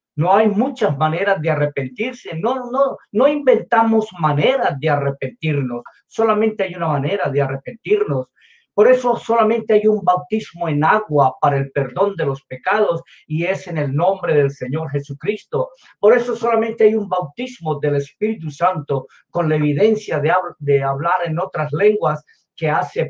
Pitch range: 140-200 Hz